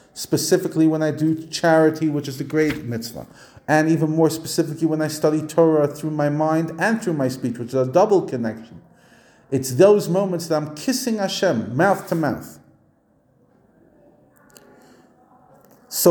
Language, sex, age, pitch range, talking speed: English, male, 40-59, 135-180 Hz, 155 wpm